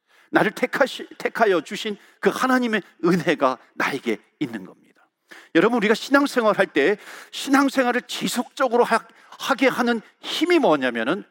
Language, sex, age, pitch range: Korean, male, 50-69, 190-280 Hz